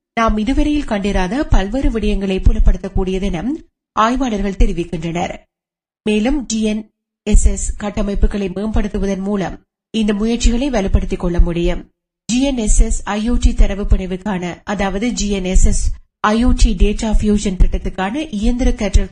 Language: Tamil